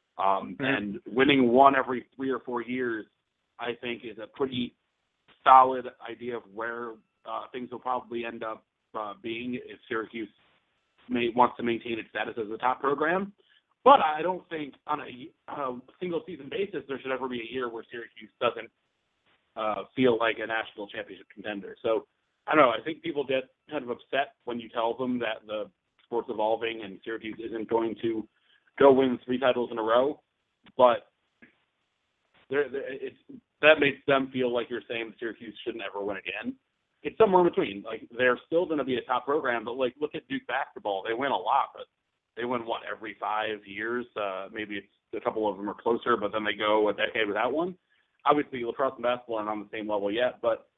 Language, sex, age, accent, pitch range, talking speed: English, male, 30-49, American, 110-135 Hz, 195 wpm